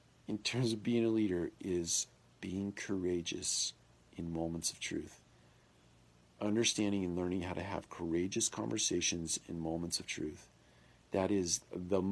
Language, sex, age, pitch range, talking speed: English, male, 40-59, 90-115 Hz, 140 wpm